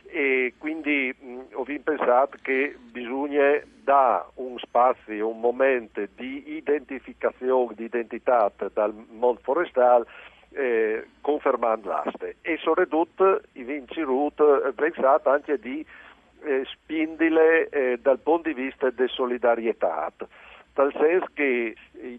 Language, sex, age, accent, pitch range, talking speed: Italian, male, 50-69, native, 115-140 Hz, 105 wpm